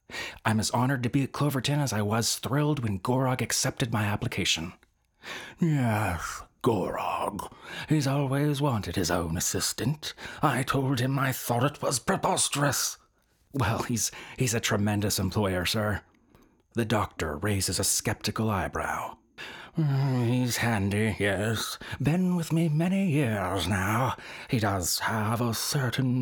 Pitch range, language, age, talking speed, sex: 110-155 Hz, English, 30-49, 135 wpm, male